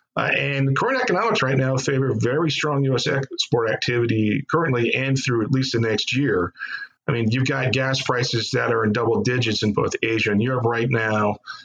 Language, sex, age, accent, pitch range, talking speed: English, male, 40-59, American, 120-145 Hz, 190 wpm